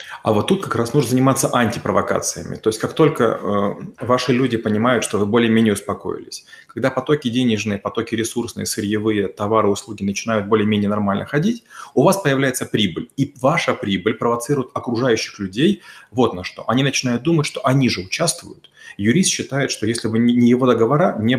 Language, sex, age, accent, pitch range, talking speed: Russian, male, 30-49, native, 110-135 Hz, 170 wpm